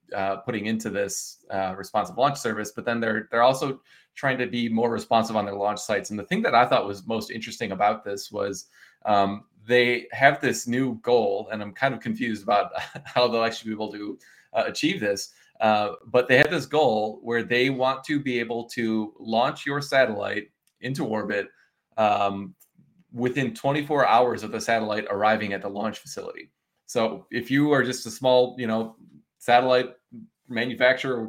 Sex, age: male, 20-39